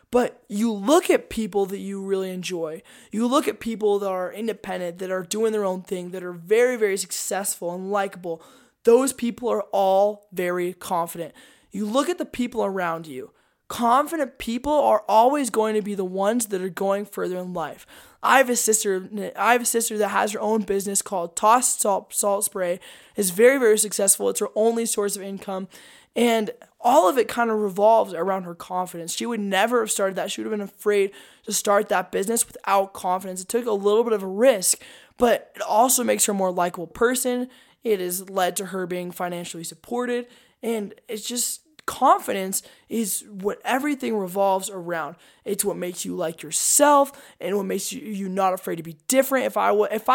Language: English